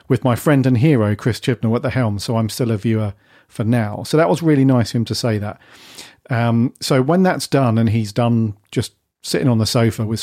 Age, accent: 40-59, British